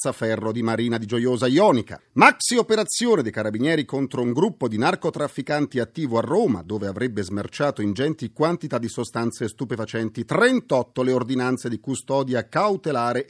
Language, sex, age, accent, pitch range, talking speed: Italian, male, 40-59, native, 135-210 Hz, 145 wpm